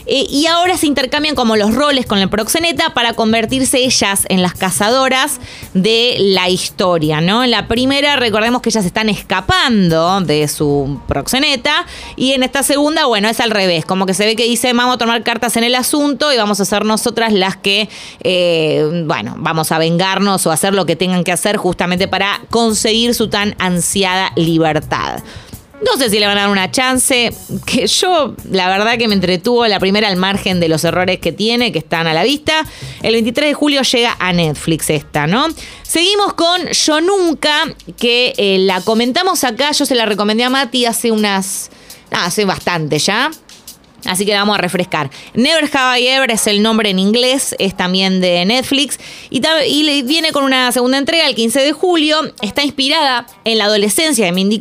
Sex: female